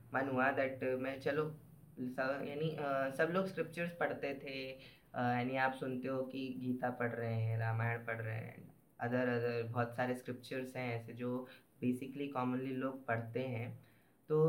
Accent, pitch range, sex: native, 120-150 Hz, female